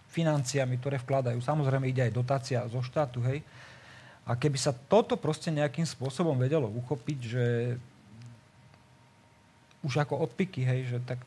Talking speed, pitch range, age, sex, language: 140 wpm, 125-150 Hz, 40-59, male, Slovak